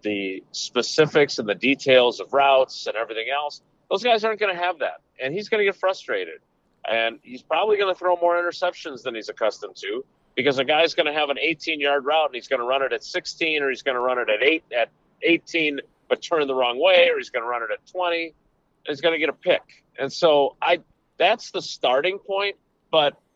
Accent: American